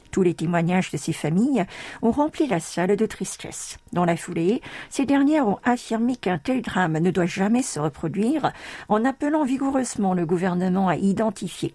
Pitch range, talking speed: 175-230 Hz, 175 wpm